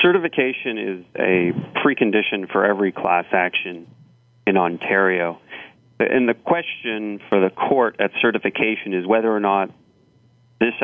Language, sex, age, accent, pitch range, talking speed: English, male, 40-59, American, 95-115 Hz, 125 wpm